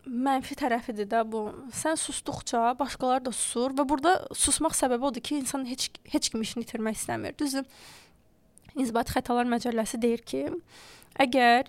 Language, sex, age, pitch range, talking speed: English, female, 20-39, 235-280 Hz, 150 wpm